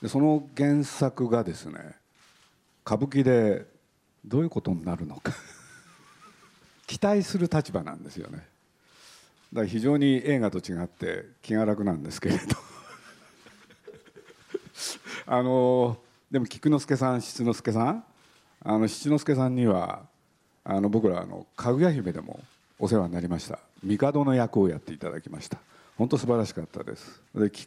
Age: 50-69